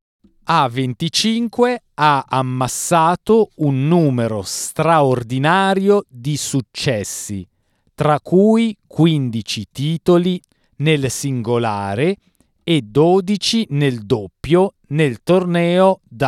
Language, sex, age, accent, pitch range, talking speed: Italian, male, 40-59, native, 110-165 Hz, 75 wpm